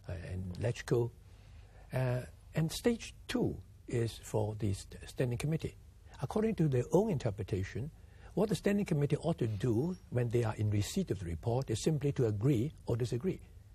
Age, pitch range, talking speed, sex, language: 60-79, 100-170 Hz, 160 wpm, male, English